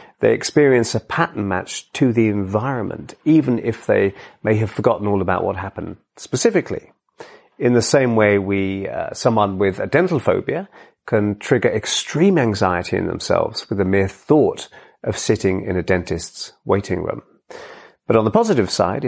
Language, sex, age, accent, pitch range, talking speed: English, male, 40-59, British, 95-120 Hz, 165 wpm